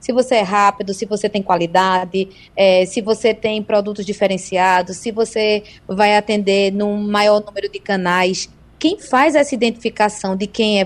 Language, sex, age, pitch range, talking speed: Portuguese, female, 20-39, 200-255 Hz, 160 wpm